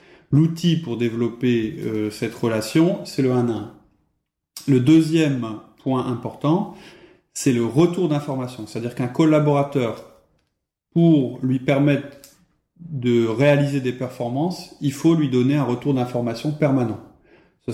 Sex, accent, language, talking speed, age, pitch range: male, French, French, 120 wpm, 30-49, 115-150 Hz